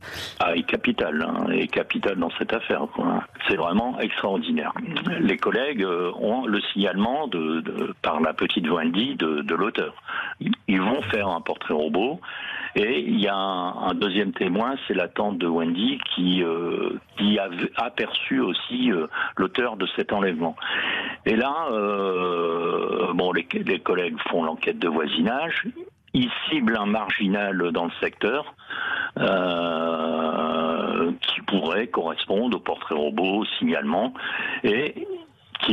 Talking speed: 145 wpm